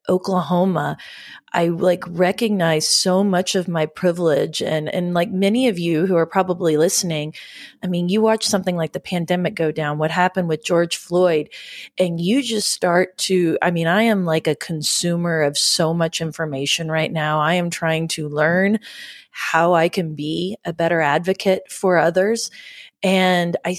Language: English